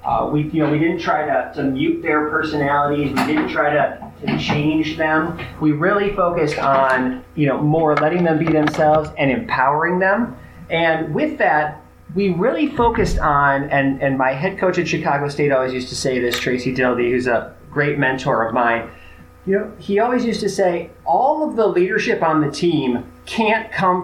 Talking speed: 190 wpm